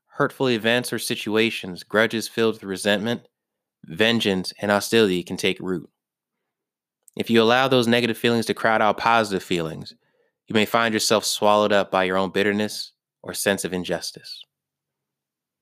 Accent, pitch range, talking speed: American, 105-130 Hz, 150 wpm